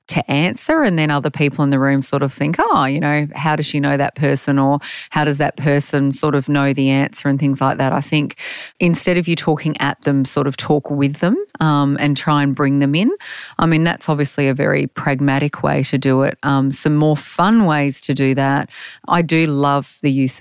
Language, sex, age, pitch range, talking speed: English, female, 30-49, 140-155 Hz, 230 wpm